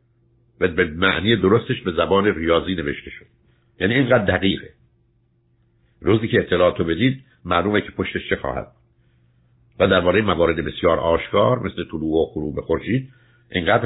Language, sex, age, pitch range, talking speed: Persian, male, 60-79, 85-120 Hz, 135 wpm